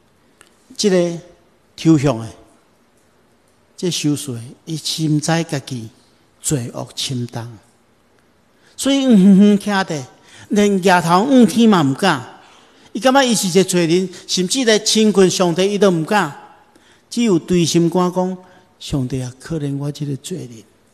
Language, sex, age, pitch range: Chinese, male, 50-69, 130-180 Hz